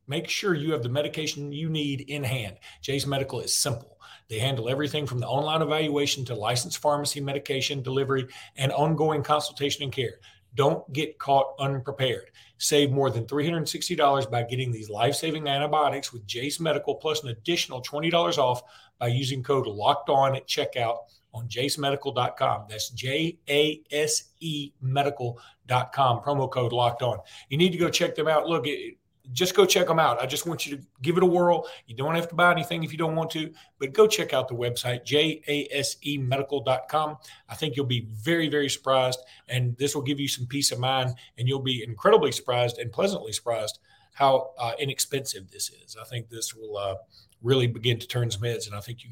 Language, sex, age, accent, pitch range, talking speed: English, male, 40-59, American, 120-150 Hz, 185 wpm